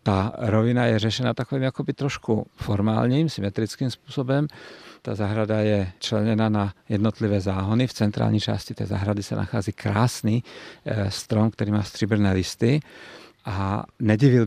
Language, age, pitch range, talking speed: Czech, 50-69, 105-120 Hz, 130 wpm